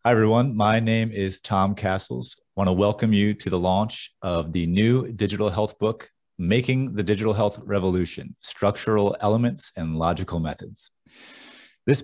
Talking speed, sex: 160 wpm, male